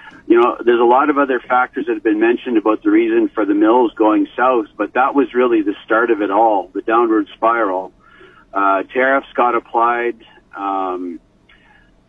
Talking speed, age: 190 wpm, 50-69